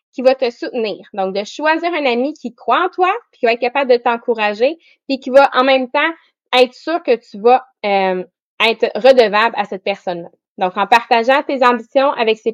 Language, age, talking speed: English, 20-39, 210 wpm